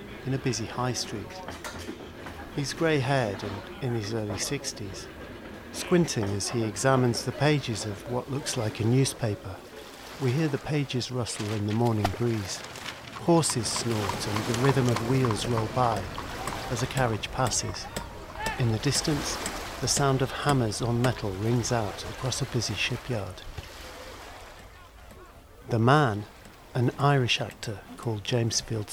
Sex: male